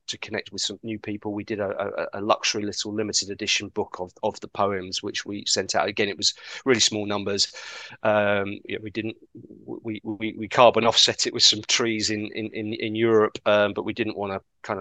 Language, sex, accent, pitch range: English, male, British, 105-115 Hz